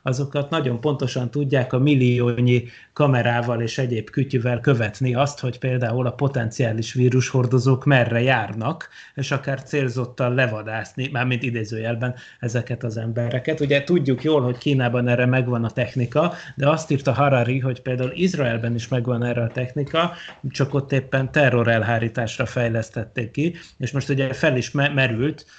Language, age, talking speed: Hungarian, 30-49, 145 wpm